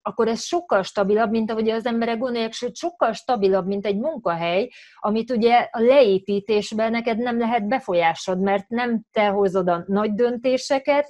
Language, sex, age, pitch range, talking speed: Hungarian, female, 30-49, 185-230 Hz, 160 wpm